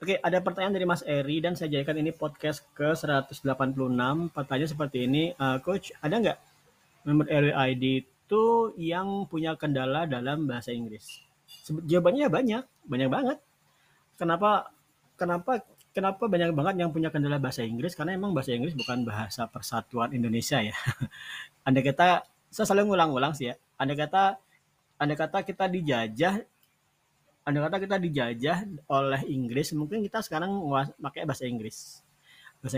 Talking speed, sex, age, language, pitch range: 145 wpm, male, 30-49, Indonesian, 135-170 Hz